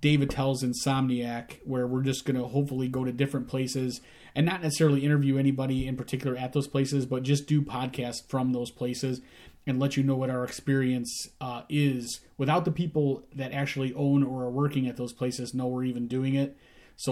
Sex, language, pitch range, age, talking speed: male, English, 125-135 Hz, 30-49, 200 wpm